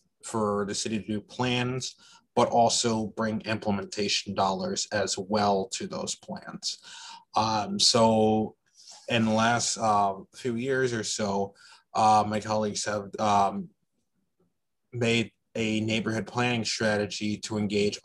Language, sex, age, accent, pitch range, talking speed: English, male, 20-39, American, 100-115 Hz, 125 wpm